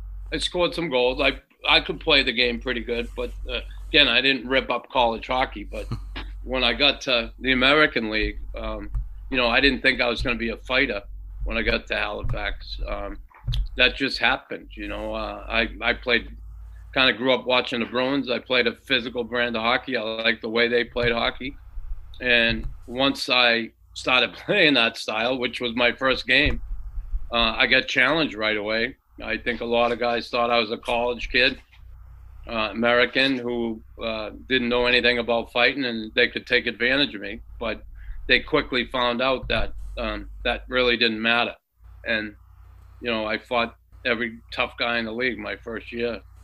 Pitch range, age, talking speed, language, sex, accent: 105-125 Hz, 40-59, 195 wpm, English, male, American